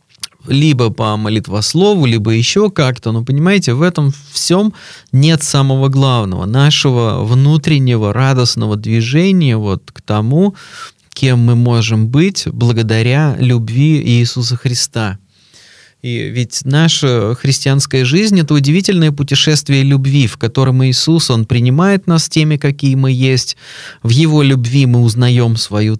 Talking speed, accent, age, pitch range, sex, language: 125 wpm, native, 20-39, 120-150 Hz, male, Russian